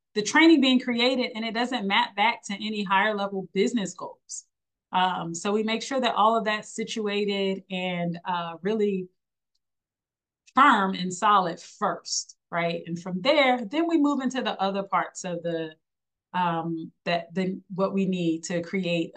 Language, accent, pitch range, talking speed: English, American, 175-240 Hz, 165 wpm